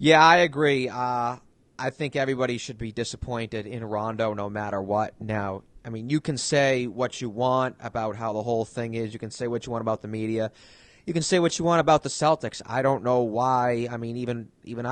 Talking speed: 225 wpm